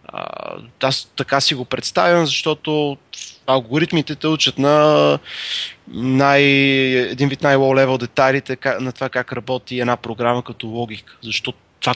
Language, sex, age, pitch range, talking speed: Bulgarian, male, 20-39, 120-145 Hz, 130 wpm